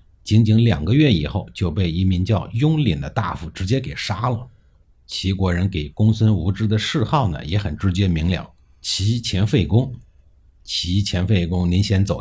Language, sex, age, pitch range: Chinese, male, 50-69, 80-110 Hz